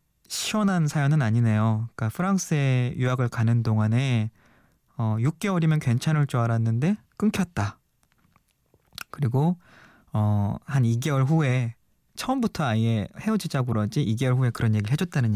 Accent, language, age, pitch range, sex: native, Korean, 20-39, 115-155 Hz, male